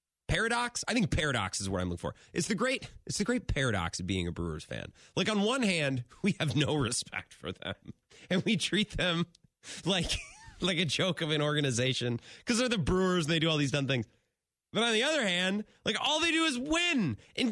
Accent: American